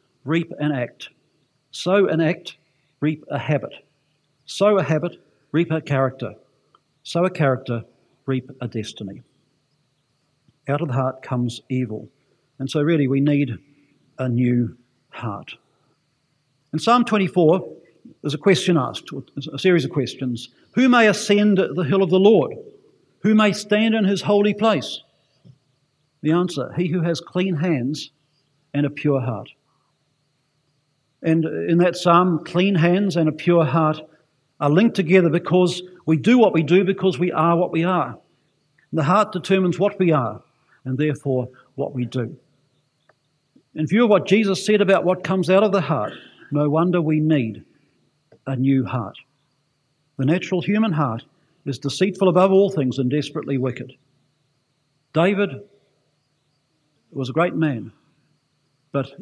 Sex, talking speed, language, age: male, 150 wpm, English, 50-69